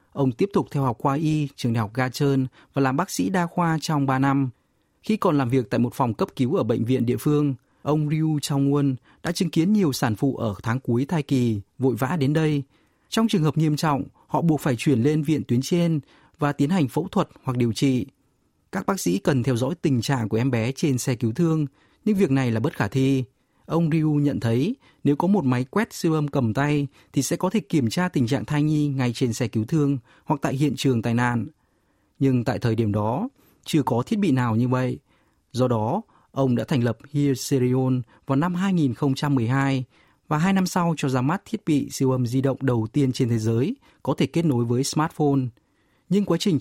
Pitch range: 125-155 Hz